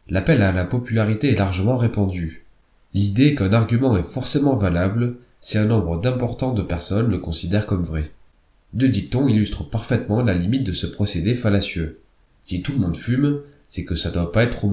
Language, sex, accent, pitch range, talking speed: French, male, French, 90-120 Hz, 185 wpm